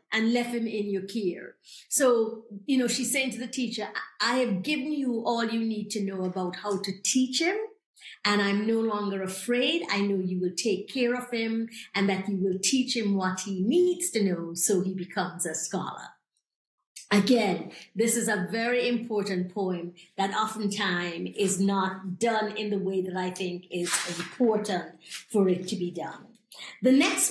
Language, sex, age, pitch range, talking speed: English, female, 50-69, 190-245 Hz, 185 wpm